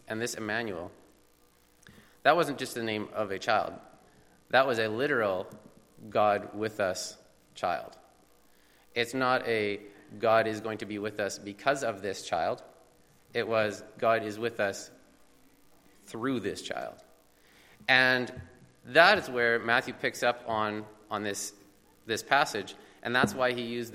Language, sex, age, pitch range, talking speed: English, male, 30-49, 105-130 Hz, 105 wpm